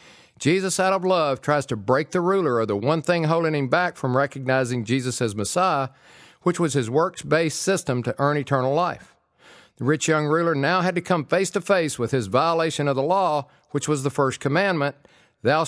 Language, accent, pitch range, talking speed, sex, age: English, American, 130-175 Hz, 195 wpm, male, 50-69